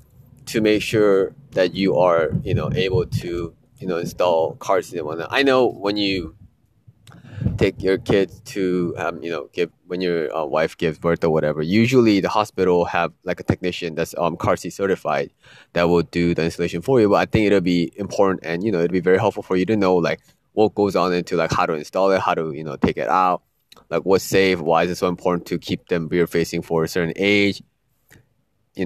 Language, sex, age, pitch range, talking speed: English, male, 20-39, 85-120 Hz, 225 wpm